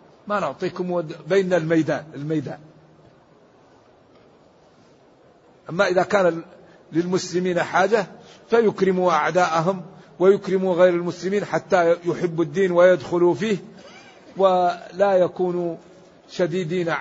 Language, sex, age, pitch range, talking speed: Arabic, male, 50-69, 165-195 Hz, 80 wpm